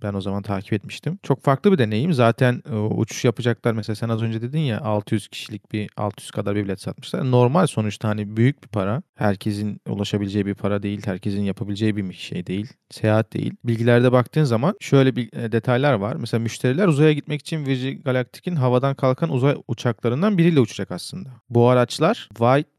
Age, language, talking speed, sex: 40-59, Turkish, 180 wpm, male